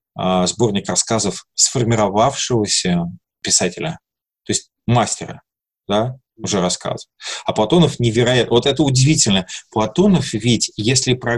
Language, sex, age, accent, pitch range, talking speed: Russian, male, 20-39, native, 100-135 Hz, 105 wpm